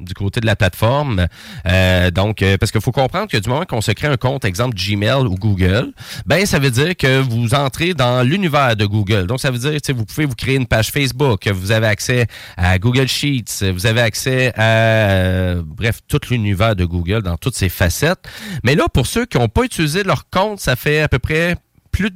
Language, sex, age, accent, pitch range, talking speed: French, male, 30-49, Canadian, 105-145 Hz, 225 wpm